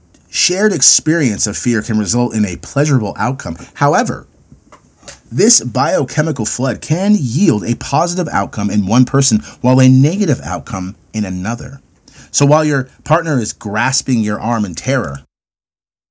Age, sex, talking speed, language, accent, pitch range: 30-49, male, 140 wpm, English, American, 105-135 Hz